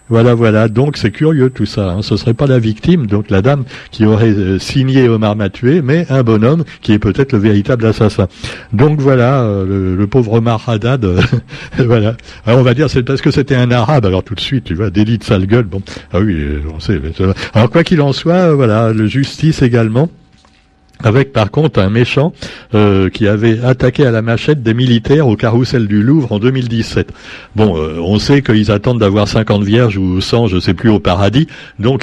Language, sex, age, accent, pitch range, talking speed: French, male, 60-79, French, 100-130 Hz, 205 wpm